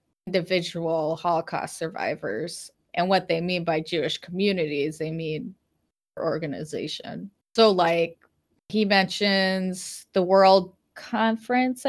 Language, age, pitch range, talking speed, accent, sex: English, 20-39, 175-215 Hz, 100 wpm, American, female